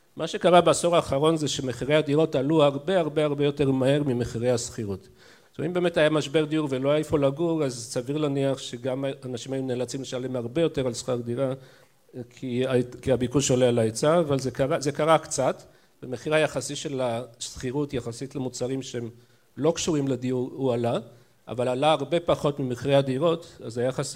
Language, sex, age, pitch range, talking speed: Hebrew, male, 50-69, 130-160 Hz, 175 wpm